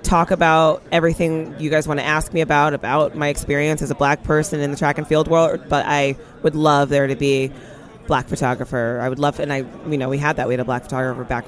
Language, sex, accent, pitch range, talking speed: English, female, American, 140-175 Hz, 250 wpm